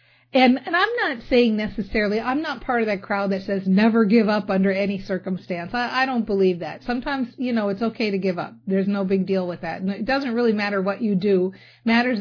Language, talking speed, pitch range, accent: English, 230 wpm, 195-245 Hz, American